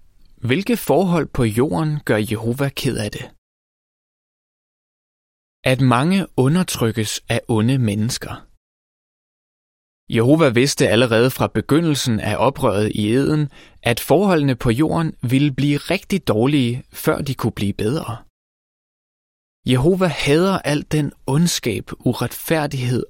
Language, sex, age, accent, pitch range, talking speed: Danish, male, 20-39, native, 110-150 Hz, 110 wpm